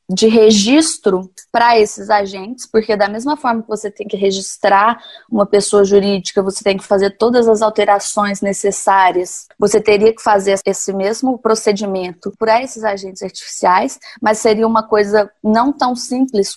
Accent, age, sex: Brazilian, 20-39, female